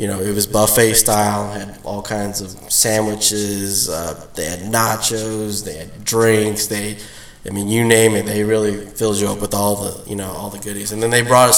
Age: 20-39